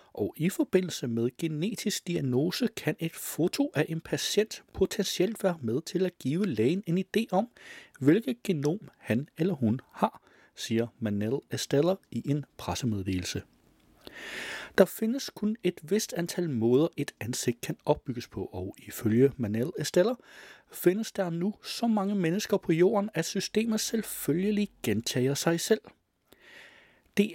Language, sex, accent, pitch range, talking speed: Danish, male, native, 130-200 Hz, 145 wpm